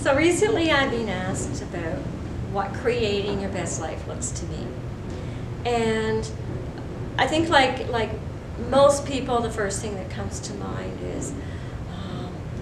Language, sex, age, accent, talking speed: English, female, 40-59, American, 145 wpm